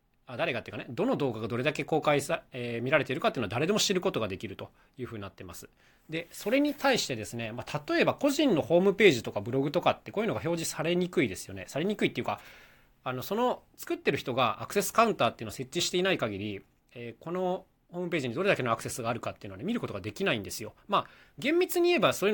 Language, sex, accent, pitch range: Japanese, male, native, 110-185 Hz